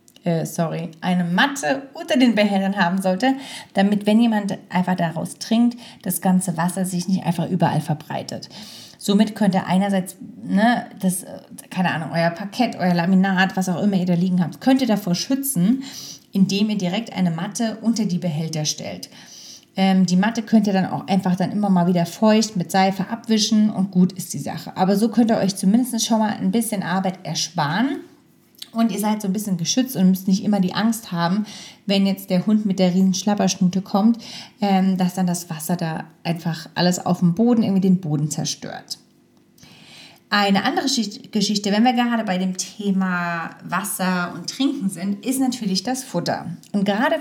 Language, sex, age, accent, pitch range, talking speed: German, female, 30-49, German, 180-225 Hz, 180 wpm